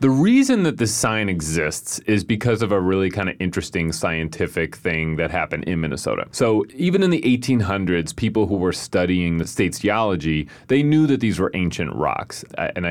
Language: English